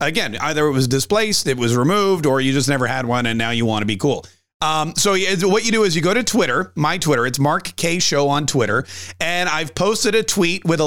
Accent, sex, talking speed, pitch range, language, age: American, male, 255 wpm, 135-190 Hz, English, 40-59